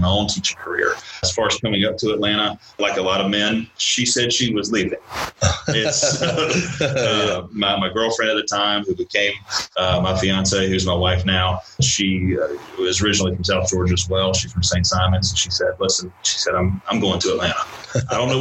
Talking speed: 205 wpm